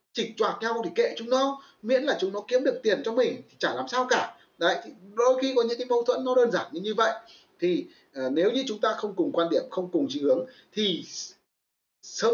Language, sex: Vietnamese, male